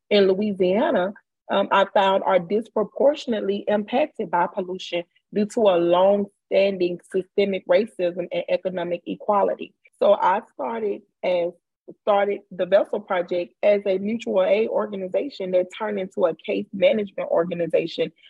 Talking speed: 130 wpm